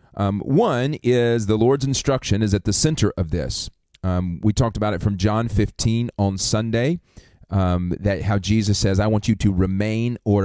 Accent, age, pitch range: American, 30-49, 95-120 Hz